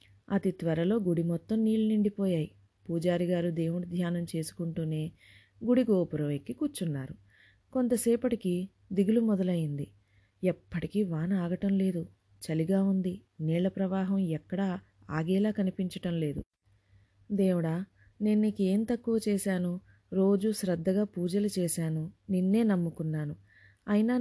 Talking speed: 100 wpm